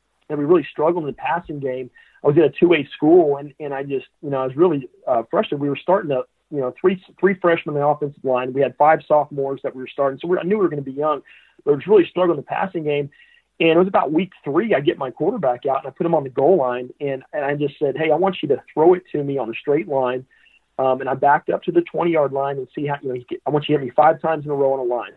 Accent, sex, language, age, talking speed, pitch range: American, male, English, 40-59, 315 wpm, 135-170 Hz